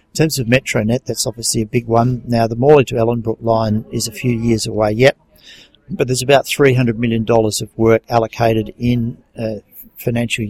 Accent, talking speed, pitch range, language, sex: Australian, 185 wpm, 110-125 Hz, English, male